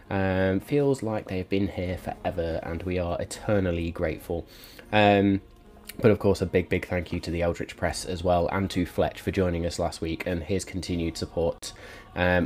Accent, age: British, 20-39